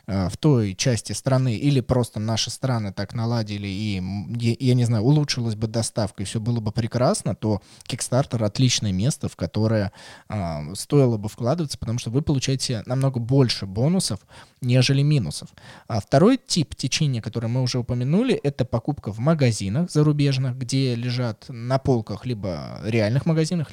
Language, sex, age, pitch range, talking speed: Russian, male, 20-39, 110-140 Hz, 150 wpm